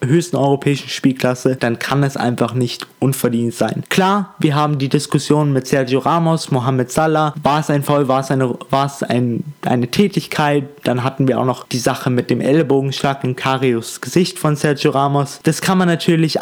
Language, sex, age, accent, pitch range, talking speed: German, male, 20-39, German, 130-155 Hz, 190 wpm